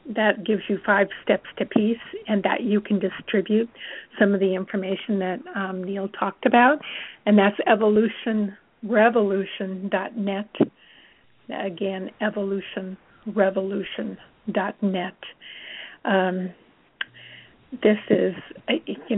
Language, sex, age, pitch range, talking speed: English, female, 50-69, 195-220 Hz, 95 wpm